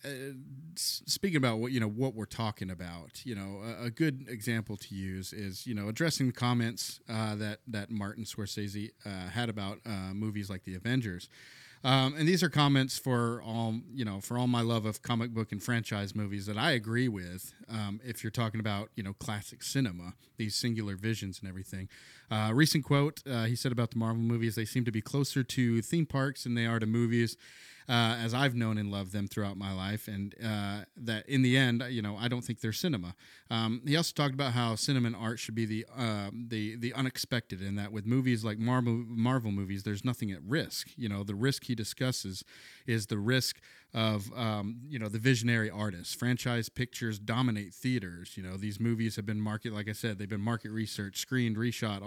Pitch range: 105-125 Hz